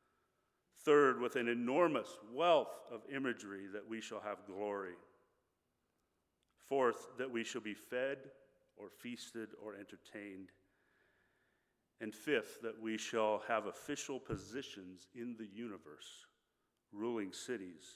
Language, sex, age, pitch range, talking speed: English, male, 40-59, 105-140 Hz, 115 wpm